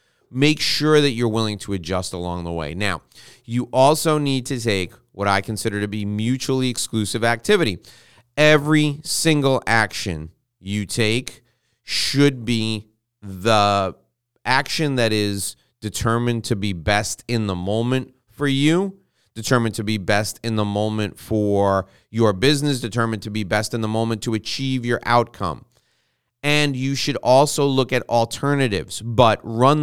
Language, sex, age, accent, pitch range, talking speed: English, male, 30-49, American, 105-130 Hz, 150 wpm